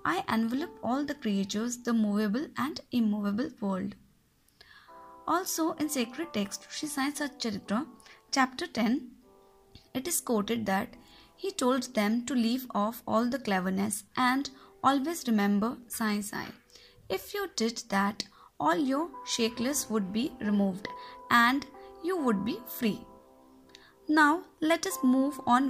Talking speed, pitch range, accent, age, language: 135 wpm, 210-275 Hz, native, 20-39, Hindi